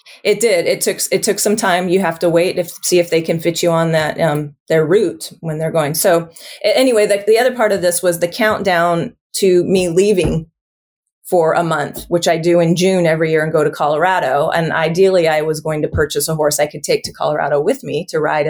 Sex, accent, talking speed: female, American, 235 wpm